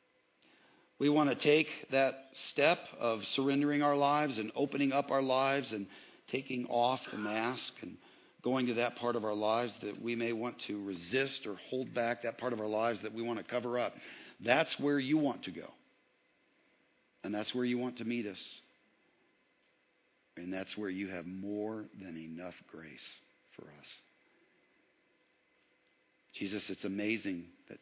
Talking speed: 165 wpm